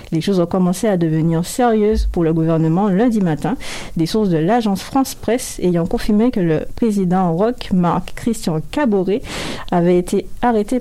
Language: French